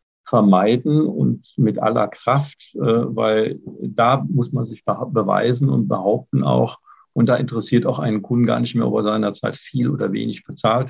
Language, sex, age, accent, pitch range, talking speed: German, male, 50-69, German, 110-135 Hz, 165 wpm